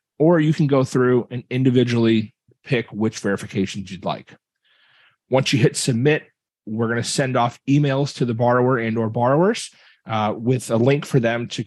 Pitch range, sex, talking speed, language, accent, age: 115-140 Hz, male, 180 wpm, English, American, 30-49